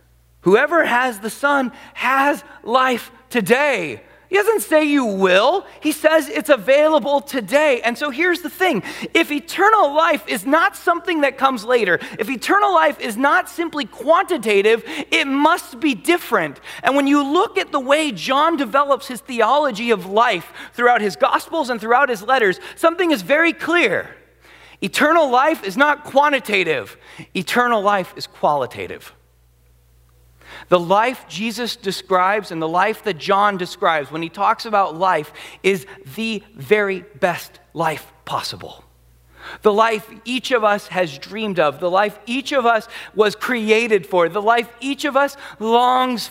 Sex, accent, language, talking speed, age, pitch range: male, American, English, 155 wpm, 30-49, 200-290 Hz